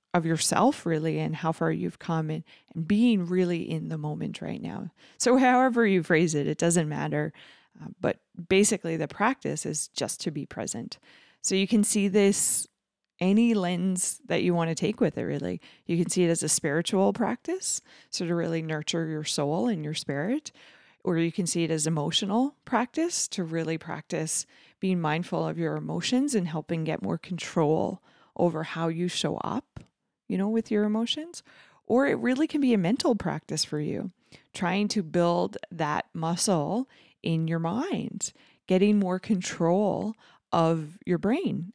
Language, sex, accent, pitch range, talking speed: English, female, American, 160-210 Hz, 170 wpm